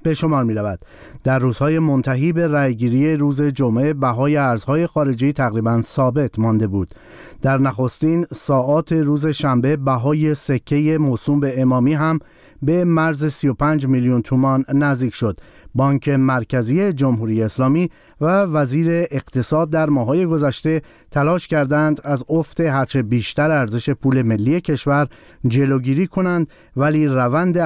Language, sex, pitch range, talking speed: Persian, male, 125-155 Hz, 125 wpm